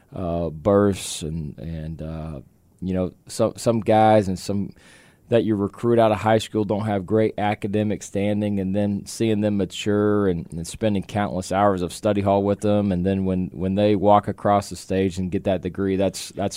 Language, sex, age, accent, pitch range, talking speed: English, male, 20-39, American, 90-105 Hz, 195 wpm